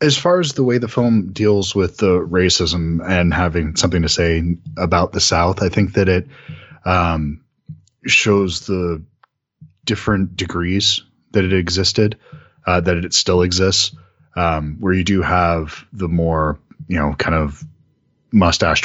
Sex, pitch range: male, 80-100 Hz